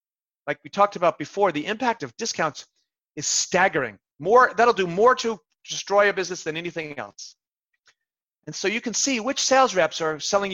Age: 30-49